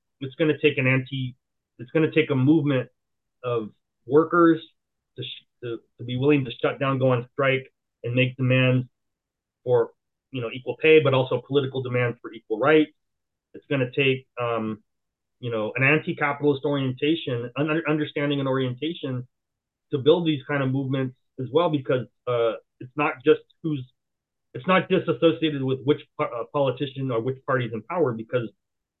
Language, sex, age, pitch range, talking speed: English, male, 30-49, 115-145 Hz, 175 wpm